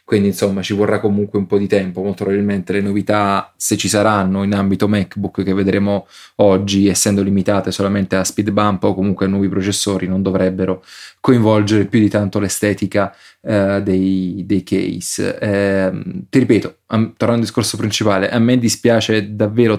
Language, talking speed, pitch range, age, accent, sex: Italian, 165 wpm, 95-105 Hz, 20-39, native, male